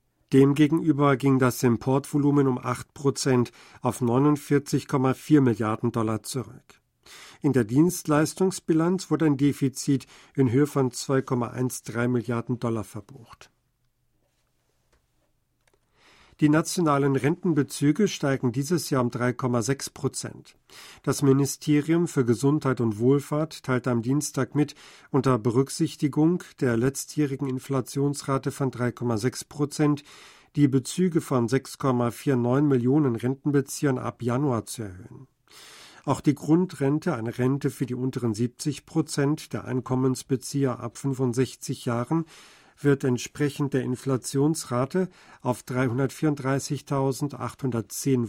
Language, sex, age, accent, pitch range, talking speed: German, male, 50-69, German, 125-145 Hz, 100 wpm